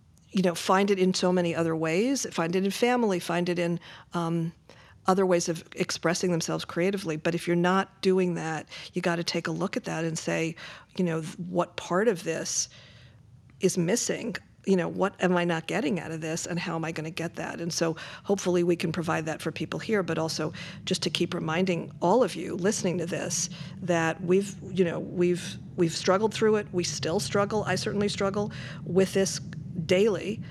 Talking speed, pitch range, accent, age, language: 205 wpm, 165-180 Hz, American, 50-69, English